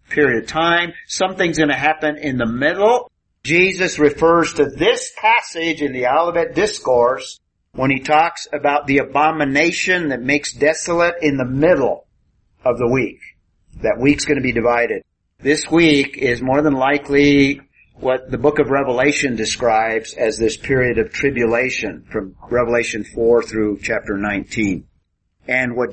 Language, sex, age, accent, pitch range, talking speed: English, male, 50-69, American, 120-150 Hz, 150 wpm